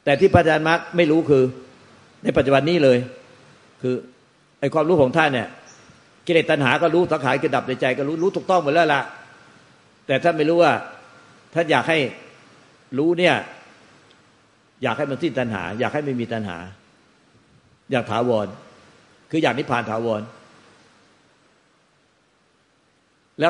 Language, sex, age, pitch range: Thai, male, 60-79, 120-155 Hz